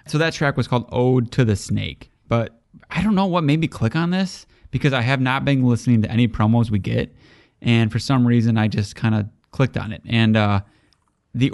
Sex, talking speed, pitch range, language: male, 230 wpm, 110-135 Hz, English